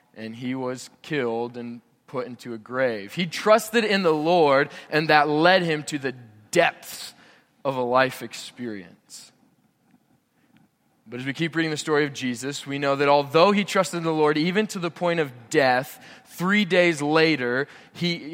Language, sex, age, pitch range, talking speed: English, male, 20-39, 130-175 Hz, 175 wpm